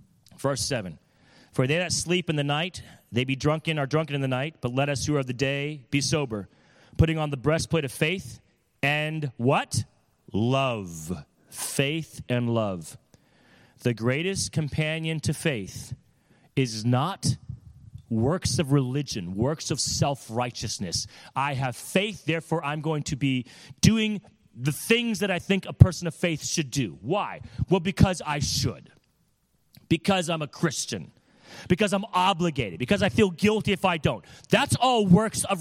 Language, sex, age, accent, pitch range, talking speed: English, male, 30-49, American, 115-165 Hz, 160 wpm